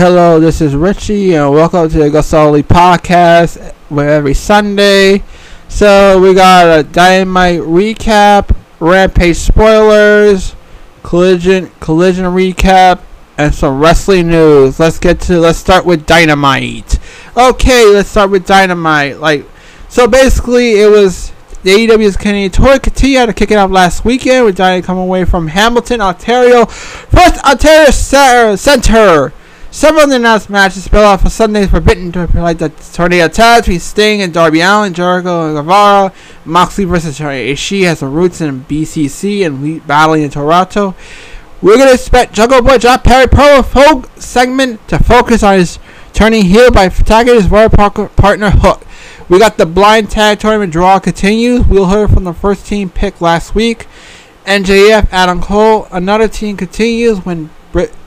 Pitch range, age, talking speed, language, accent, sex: 170-215 Hz, 20-39, 155 wpm, English, American, male